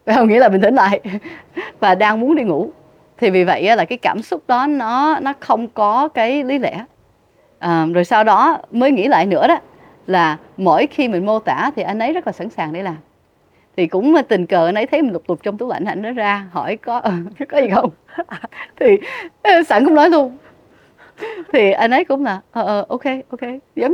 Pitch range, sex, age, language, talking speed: 185-275 Hz, female, 20-39, Vietnamese, 210 wpm